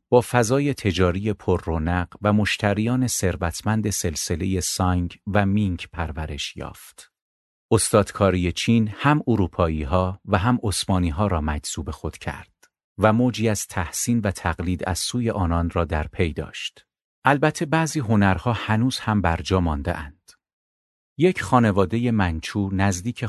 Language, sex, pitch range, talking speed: Persian, male, 85-110 Hz, 135 wpm